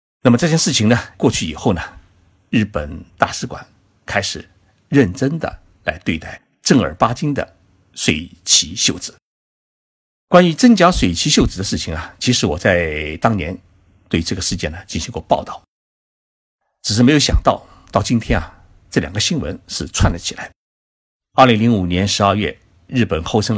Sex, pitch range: male, 85-120 Hz